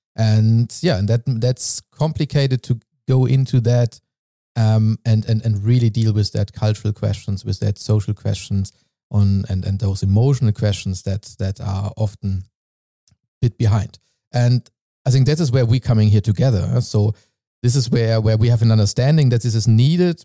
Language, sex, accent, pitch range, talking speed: English, male, German, 105-120 Hz, 180 wpm